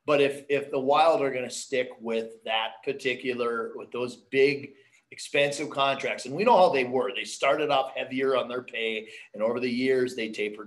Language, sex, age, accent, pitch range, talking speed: English, male, 30-49, American, 110-140 Hz, 195 wpm